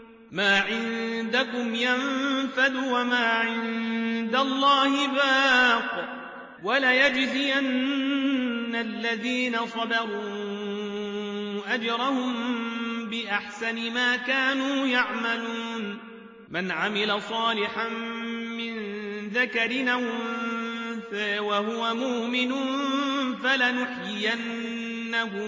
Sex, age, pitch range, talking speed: male, 30-49, 230-250 Hz, 55 wpm